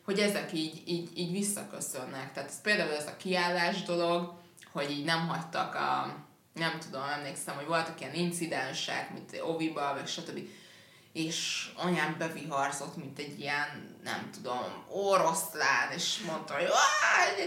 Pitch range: 150-200 Hz